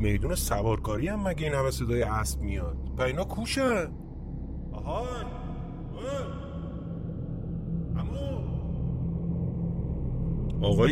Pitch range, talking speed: 115-165 Hz, 70 wpm